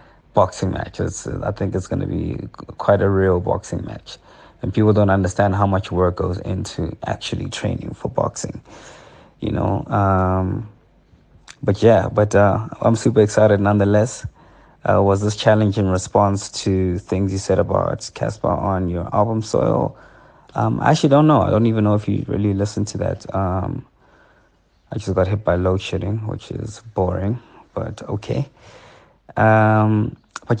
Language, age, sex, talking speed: English, 20-39, male, 160 wpm